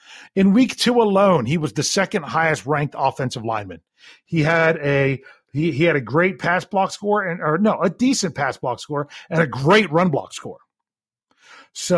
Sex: male